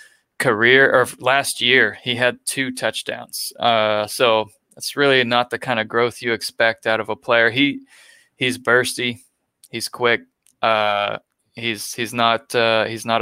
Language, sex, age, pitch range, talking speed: English, male, 20-39, 110-125 Hz, 160 wpm